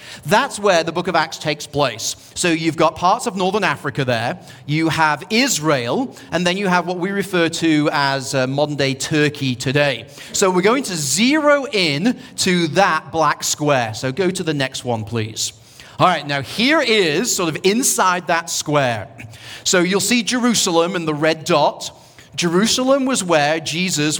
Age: 40-59